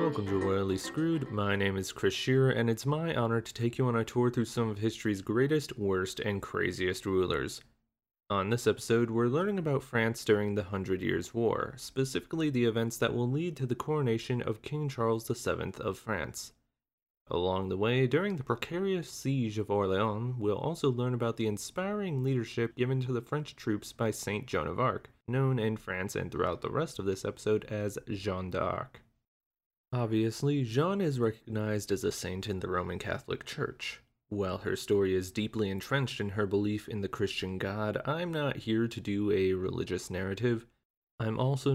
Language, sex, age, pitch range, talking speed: English, male, 20-39, 105-130 Hz, 185 wpm